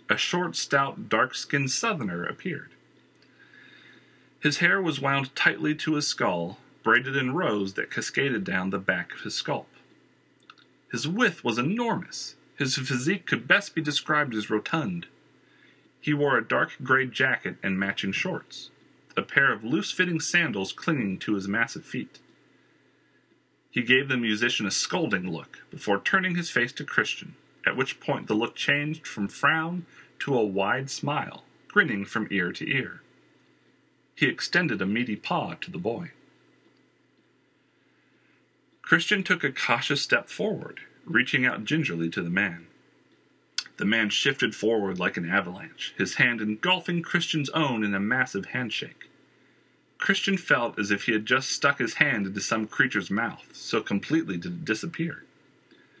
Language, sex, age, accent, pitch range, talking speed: English, male, 40-59, American, 110-170 Hz, 150 wpm